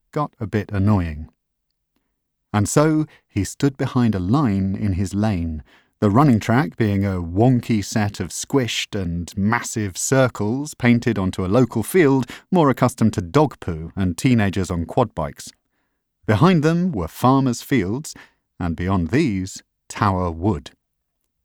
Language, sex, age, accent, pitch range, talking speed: English, male, 30-49, British, 95-125 Hz, 145 wpm